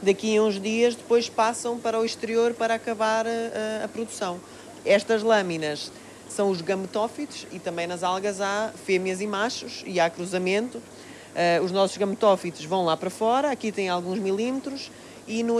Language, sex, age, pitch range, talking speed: Portuguese, female, 20-39, 175-215 Hz, 170 wpm